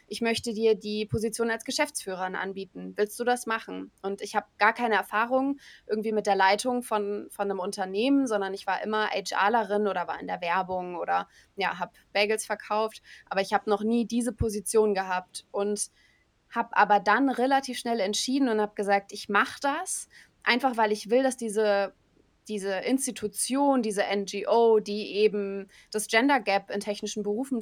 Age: 20-39